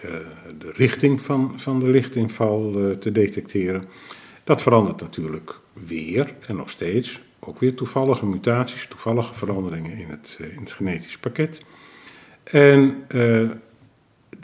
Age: 50-69